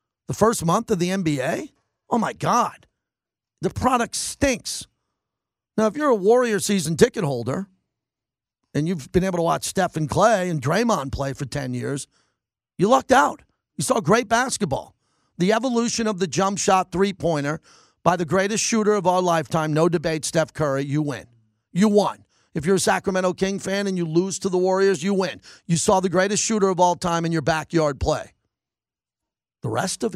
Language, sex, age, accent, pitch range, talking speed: English, male, 40-59, American, 155-195 Hz, 185 wpm